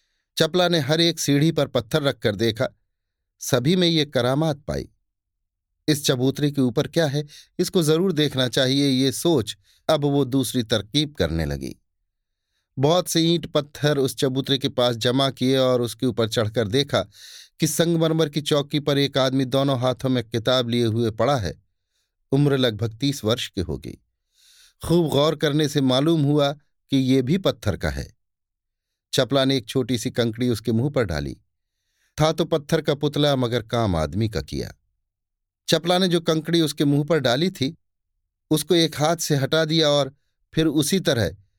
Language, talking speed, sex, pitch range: Hindi, 170 wpm, male, 100-150 Hz